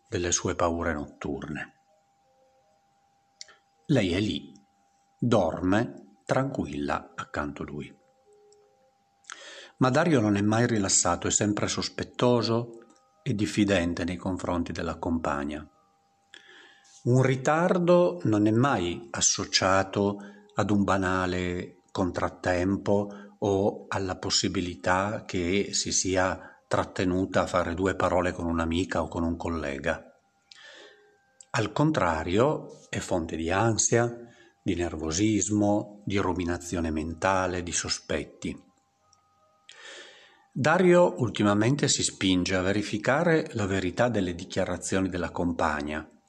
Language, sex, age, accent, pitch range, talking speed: Italian, male, 50-69, native, 90-120 Hz, 100 wpm